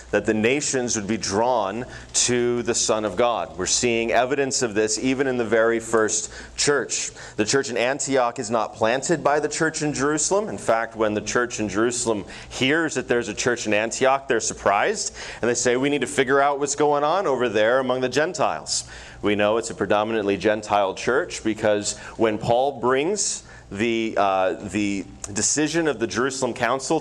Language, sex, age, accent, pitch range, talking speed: English, male, 30-49, American, 110-135 Hz, 190 wpm